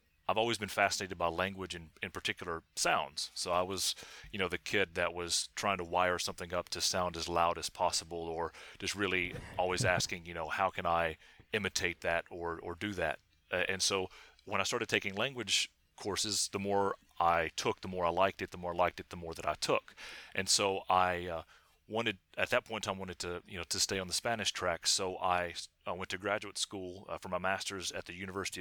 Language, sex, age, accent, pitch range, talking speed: English, male, 30-49, American, 85-100 Hz, 225 wpm